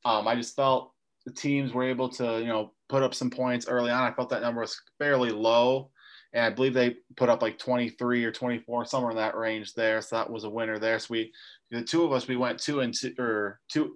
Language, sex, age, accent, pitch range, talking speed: English, male, 20-39, American, 115-125 Hz, 250 wpm